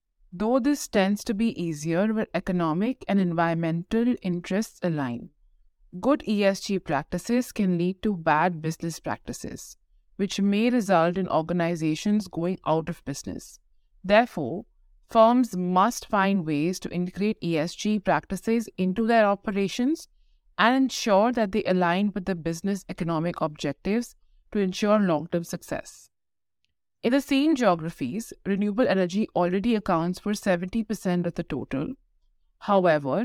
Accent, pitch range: Indian, 170-215 Hz